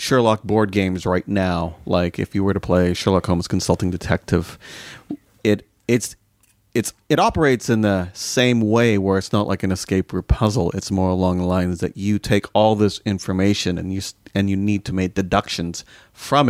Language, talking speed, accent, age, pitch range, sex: English, 190 wpm, American, 40-59, 95-115 Hz, male